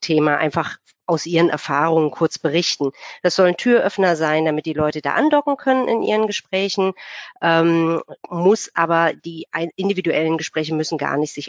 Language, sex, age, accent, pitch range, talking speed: German, female, 50-69, German, 150-180 Hz, 160 wpm